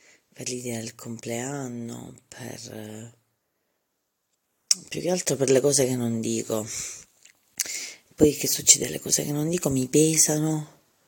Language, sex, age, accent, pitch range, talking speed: Italian, female, 30-49, native, 120-145 Hz, 130 wpm